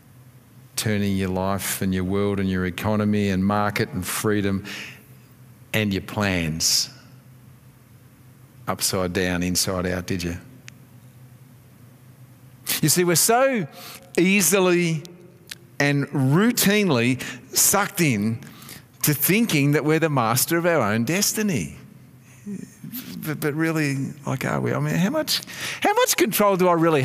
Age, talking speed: 50-69, 125 wpm